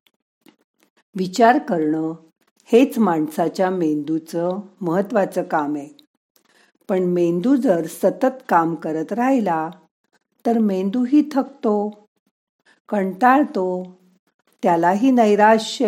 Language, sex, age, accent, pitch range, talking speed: Marathi, female, 50-69, native, 175-240 Hz, 85 wpm